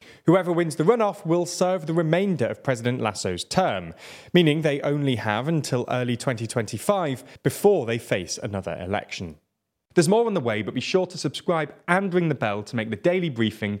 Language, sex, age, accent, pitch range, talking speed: English, male, 30-49, British, 115-165 Hz, 185 wpm